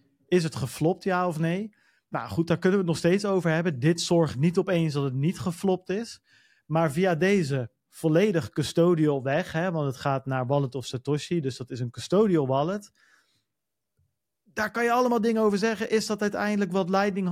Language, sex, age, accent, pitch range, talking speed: Dutch, male, 40-59, Dutch, 135-180 Hz, 200 wpm